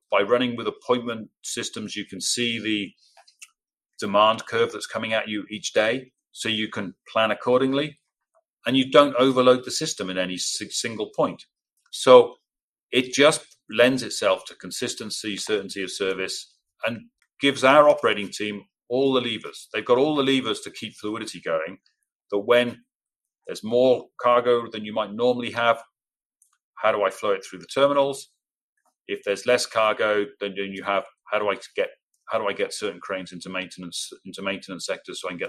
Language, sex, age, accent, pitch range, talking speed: English, male, 40-59, British, 105-150 Hz, 175 wpm